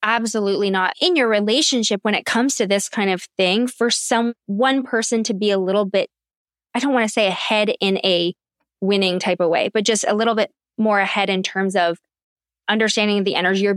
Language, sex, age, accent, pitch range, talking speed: English, female, 20-39, American, 190-225 Hz, 210 wpm